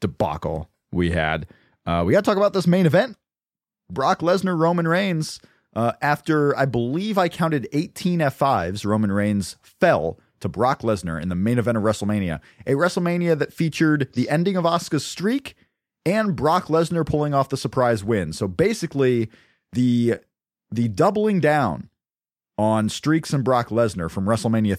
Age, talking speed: 30-49, 160 wpm